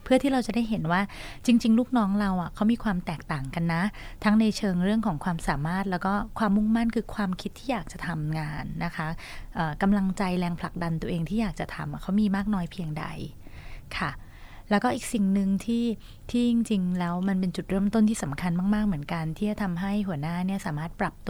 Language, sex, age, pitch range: Thai, female, 20-39, 165-210 Hz